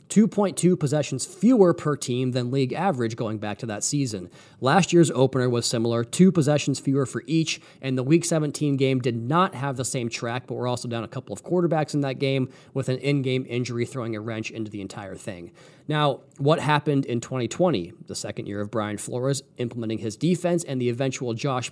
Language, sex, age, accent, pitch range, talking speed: English, male, 30-49, American, 120-150 Hz, 205 wpm